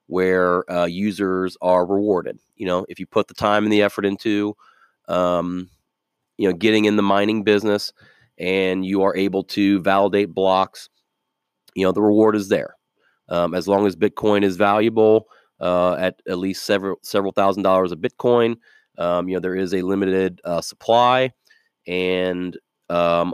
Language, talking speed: English, 165 wpm